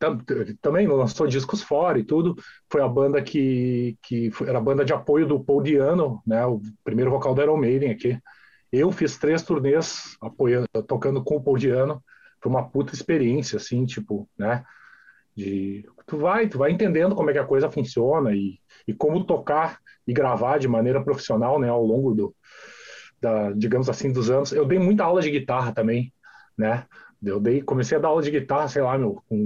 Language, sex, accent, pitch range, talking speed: Portuguese, male, Brazilian, 120-175 Hz, 190 wpm